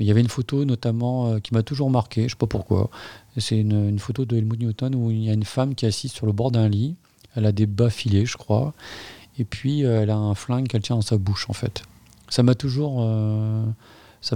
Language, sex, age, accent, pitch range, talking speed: French, male, 40-59, French, 110-125 Hz, 265 wpm